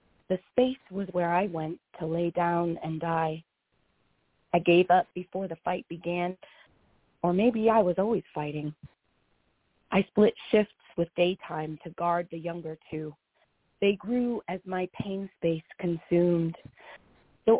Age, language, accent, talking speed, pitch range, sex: 30-49, English, American, 145 wpm, 165-190 Hz, female